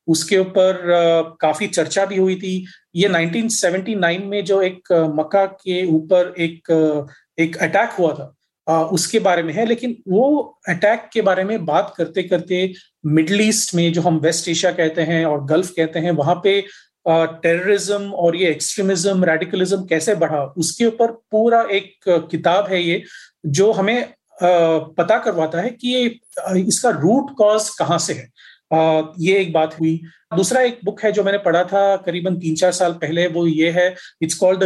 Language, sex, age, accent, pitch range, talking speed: Hindi, male, 40-59, native, 165-200 Hz, 170 wpm